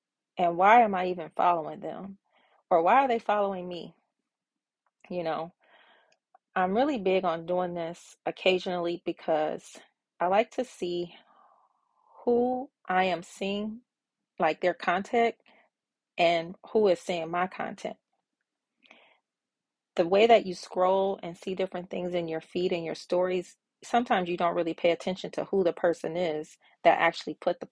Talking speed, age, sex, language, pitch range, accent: 150 wpm, 30-49, female, English, 170-200 Hz, American